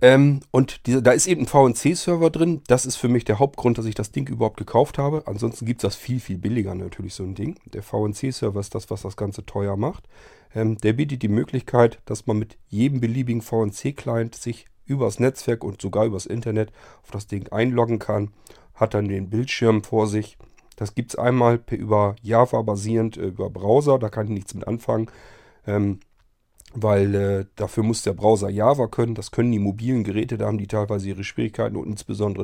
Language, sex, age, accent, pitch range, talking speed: German, male, 40-59, German, 105-130 Hz, 200 wpm